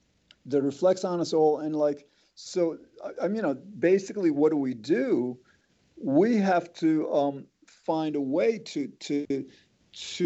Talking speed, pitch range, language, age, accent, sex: 150 wpm, 145-185 Hz, English, 50-69, American, male